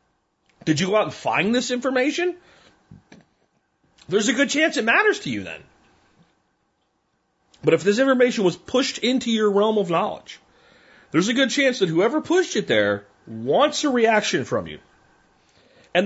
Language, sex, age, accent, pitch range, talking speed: English, male, 40-59, American, 170-245 Hz, 160 wpm